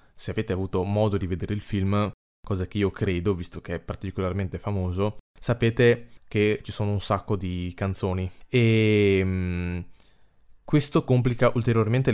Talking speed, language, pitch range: 145 wpm, Italian, 95-120 Hz